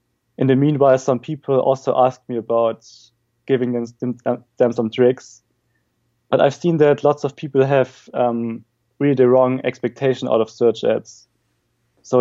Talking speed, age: 155 wpm, 20-39